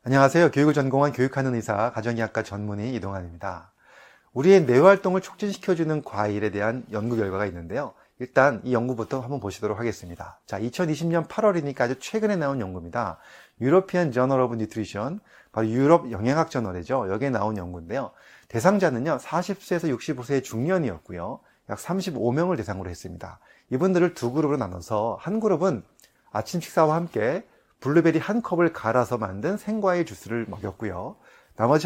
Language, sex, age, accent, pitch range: Korean, male, 30-49, native, 110-170 Hz